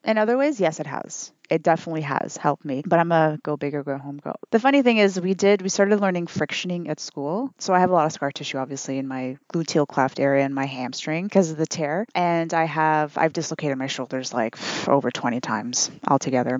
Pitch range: 145-195 Hz